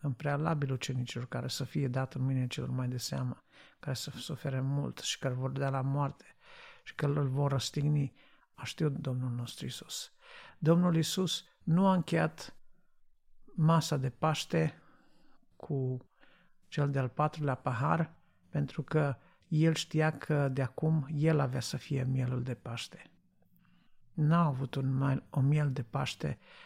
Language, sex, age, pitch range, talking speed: Romanian, male, 50-69, 130-155 Hz, 155 wpm